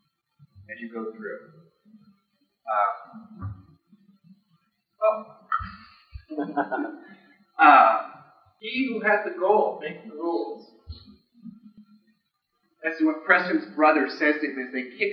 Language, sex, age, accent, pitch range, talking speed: English, male, 40-59, American, 140-215 Hz, 95 wpm